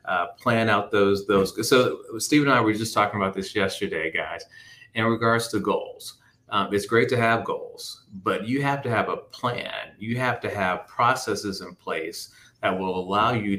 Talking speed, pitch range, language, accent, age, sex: 195 wpm, 95-120 Hz, English, American, 30-49, male